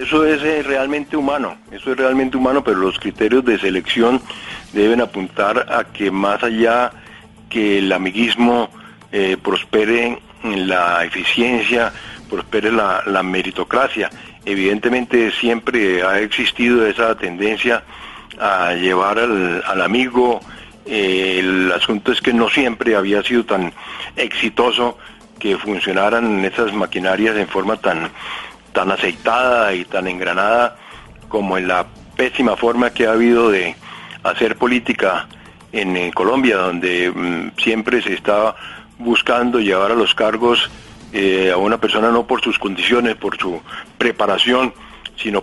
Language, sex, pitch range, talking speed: Spanish, male, 100-120 Hz, 130 wpm